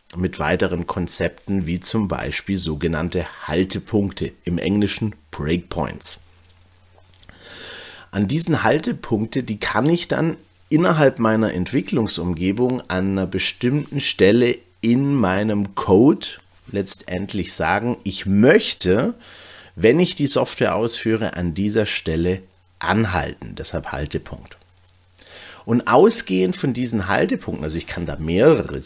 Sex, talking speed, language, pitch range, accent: male, 110 wpm, German, 85-110 Hz, German